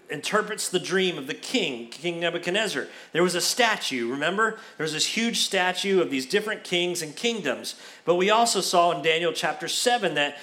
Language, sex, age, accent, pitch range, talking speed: English, male, 40-59, American, 145-180 Hz, 190 wpm